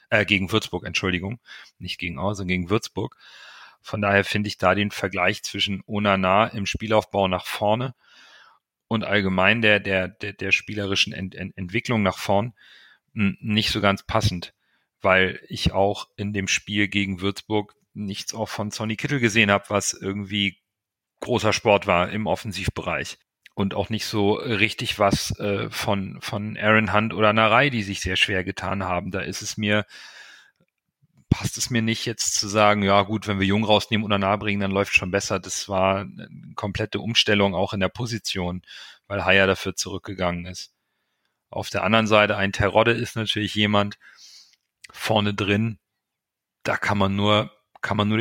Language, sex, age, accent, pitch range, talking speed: German, male, 40-59, German, 95-110 Hz, 165 wpm